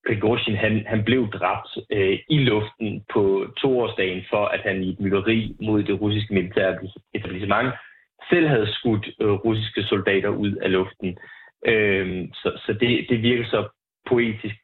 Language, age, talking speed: Danish, 30-49, 150 wpm